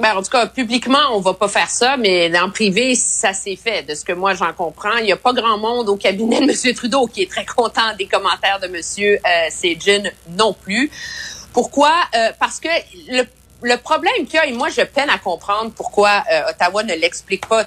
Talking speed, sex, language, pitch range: 225 wpm, female, French, 195-285 Hz